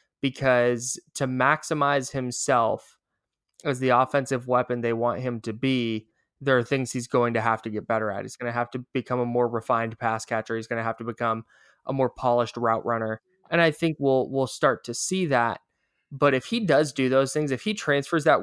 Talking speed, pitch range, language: 215 wpm, 125-150 Hz, English